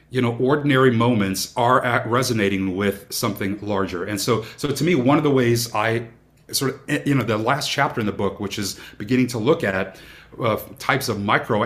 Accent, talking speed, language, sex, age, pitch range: American, 200 wpm, English, male, 30-49, 100-130 Hz